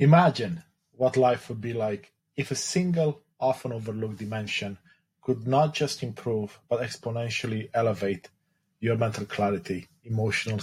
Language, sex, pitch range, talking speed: English, male, 105-135 Hz, 130 wpm